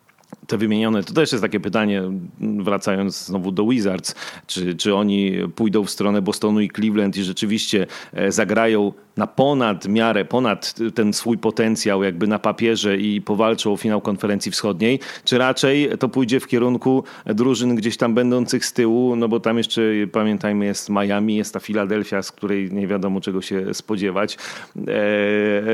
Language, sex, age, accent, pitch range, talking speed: Polish, male, 30-49, native, 100-125 Hz, 160 wpm